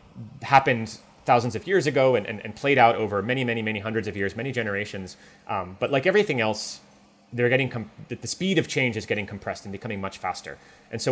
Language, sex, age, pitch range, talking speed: English, male, 30-49, 105-135 Hz, 220 wpm